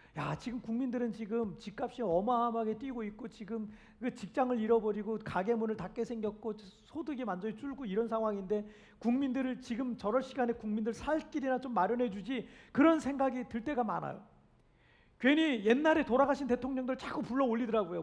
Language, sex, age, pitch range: Korean, male, 40-59, 220-270 Hz